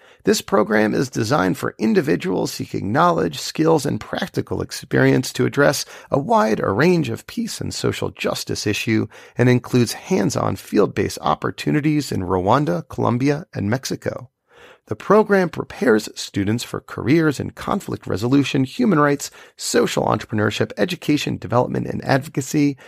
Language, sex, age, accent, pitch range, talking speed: English, male, 40-59, American, 110-155 Hz, 130 wpm